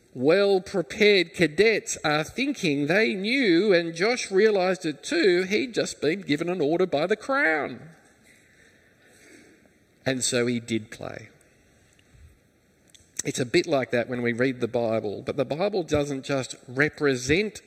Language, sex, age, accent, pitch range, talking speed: English, male, 50-69, Australian, 125-175 Hz, 145 wpm